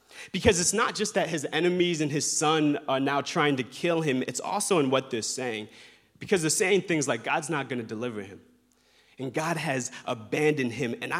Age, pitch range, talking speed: 30-49, 130-165 Hz, 210 wpm